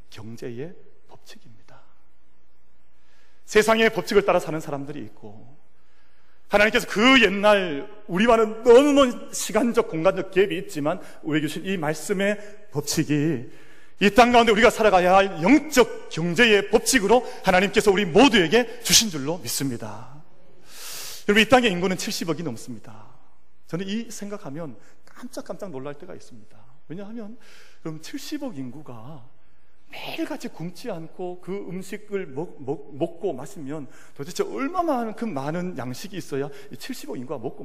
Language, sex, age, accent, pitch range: Korean, male, 40-59, native, 145-230 Hz